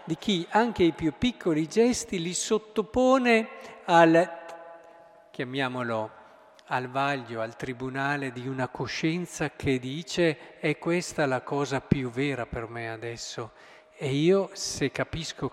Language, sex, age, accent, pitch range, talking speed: Italian, male, 50-69, native, 130-175 Hz, 130 wpm